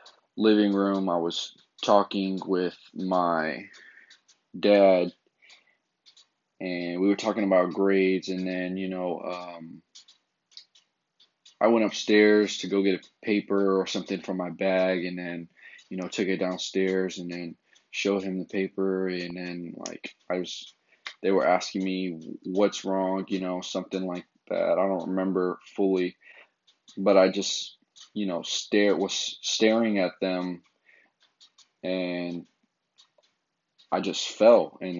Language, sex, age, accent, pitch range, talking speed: English, male, 20-39, American, 90-100 Hz, 135 wpm